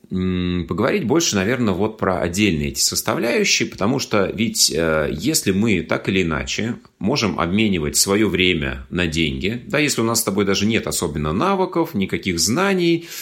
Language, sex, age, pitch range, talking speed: Russian, male, 30-49, 80-115 Hz, 155 wpm